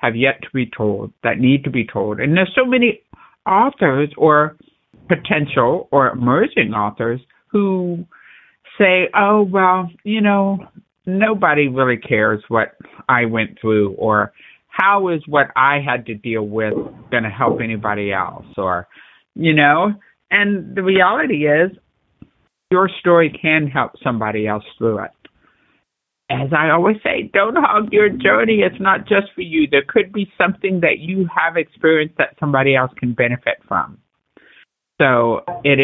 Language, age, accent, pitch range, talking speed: English, 50-69, American, 120-185 Hz, 150 wpm